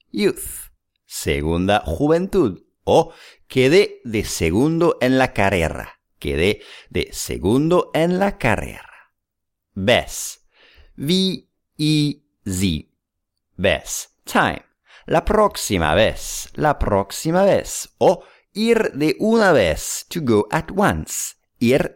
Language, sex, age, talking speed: English, male, 50-69, 100 wpm